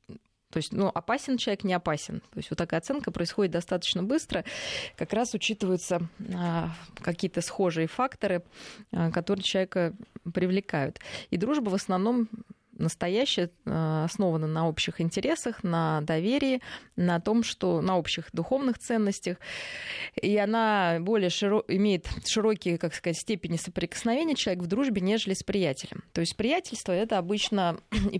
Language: Russian